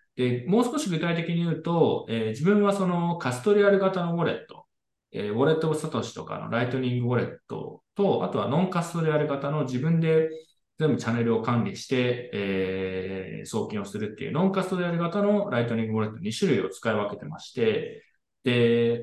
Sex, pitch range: male, 125-200 Hz